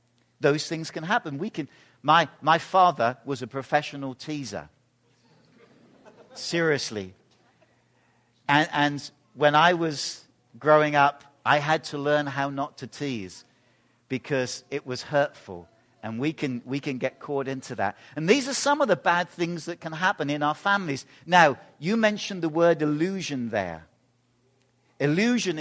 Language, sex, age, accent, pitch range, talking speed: English, male, 50-69, British, 130-190 Hz, 150 wpm